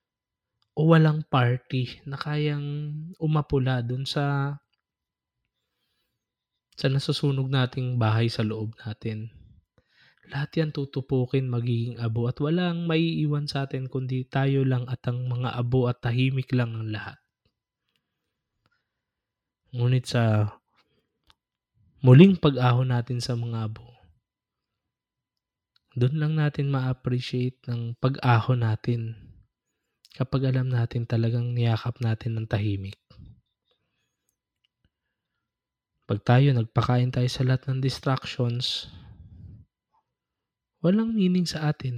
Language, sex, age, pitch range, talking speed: Filipino, male, 20-39, 115-140 Hz, 105 wpm